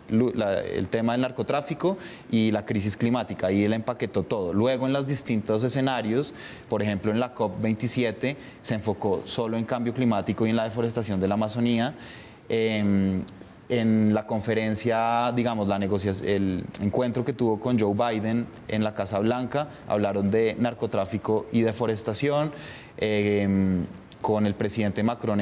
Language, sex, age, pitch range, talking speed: Spanish, male, 20-39, 105-120 Hz, 145 wpm